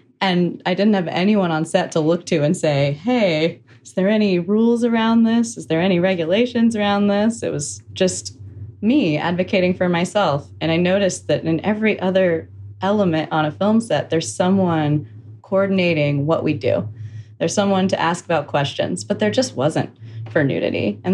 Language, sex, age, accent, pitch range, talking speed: English, female, 20-39, American, 145-180 Hz, 180 wpm